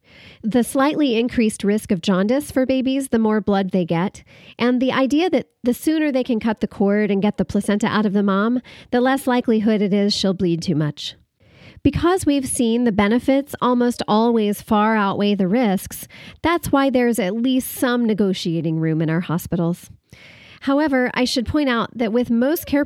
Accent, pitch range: American, 195-250 Hz